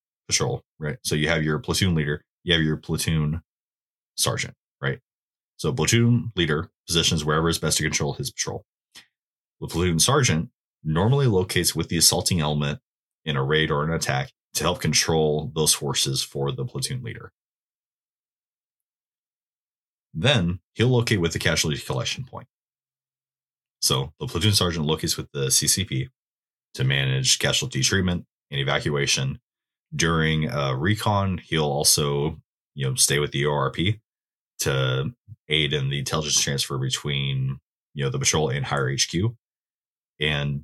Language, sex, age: English, male, 30-49